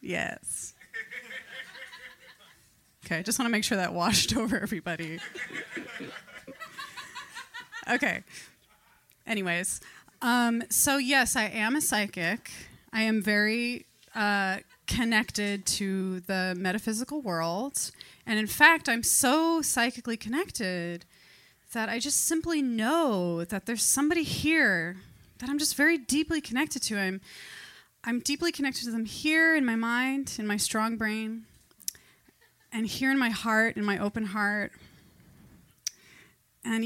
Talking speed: 125 wpm